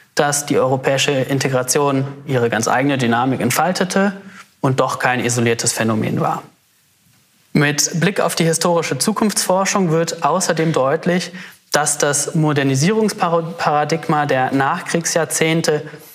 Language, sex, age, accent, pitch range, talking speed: German, male, 30-49, German, 130-170 Hz, 110 wpm